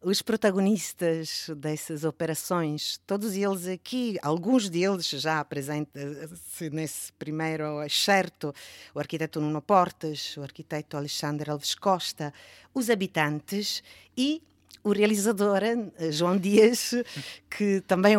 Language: Portuguese